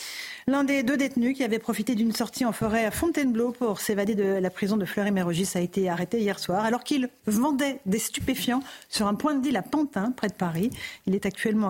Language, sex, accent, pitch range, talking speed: French, female, French, 190-225 Hz, 220 wpm